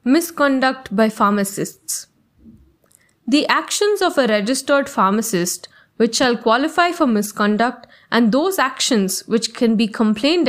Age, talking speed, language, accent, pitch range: 10-29, 120 wpm, English, Indian, 210-270 Hz